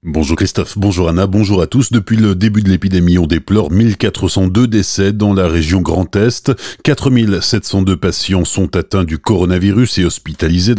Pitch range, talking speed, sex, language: 95-115 Hz, 160 wpm, male, French